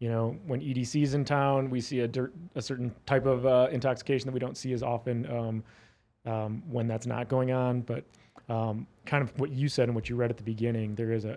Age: 30-49